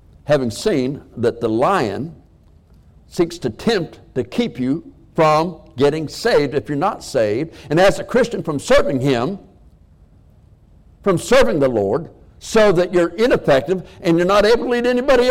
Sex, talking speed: male, 155 wpm